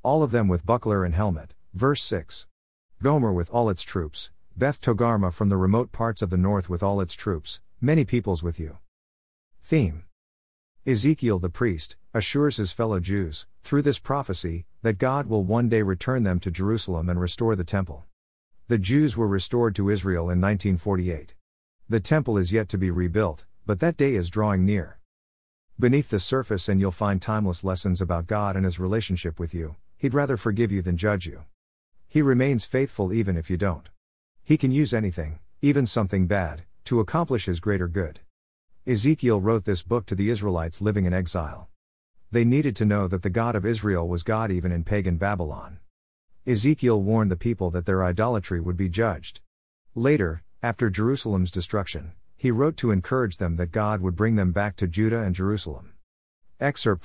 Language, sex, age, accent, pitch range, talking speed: English, male, 50-69, American, 90-115 Hz, 180 wpm